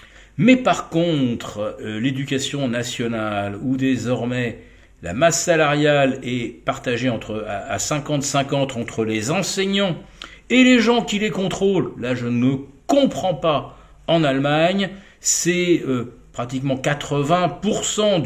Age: 50-69